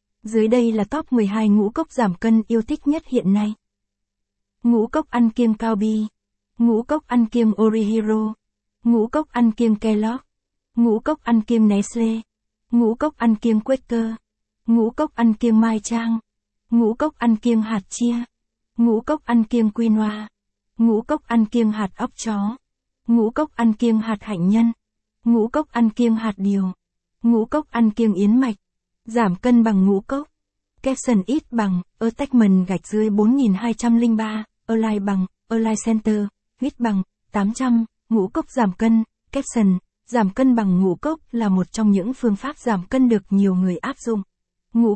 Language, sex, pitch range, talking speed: Vietnamese, female, 210-240 Hz, 170 wpm